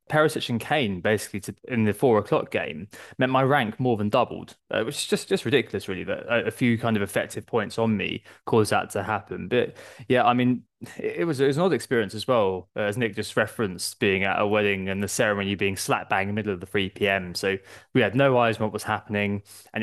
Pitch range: 100-120 Hz